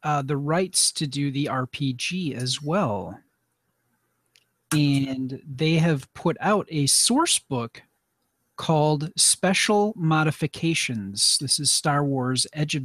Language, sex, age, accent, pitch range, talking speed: English, male, 40-59, American, 135-170 Hz, 120 wpm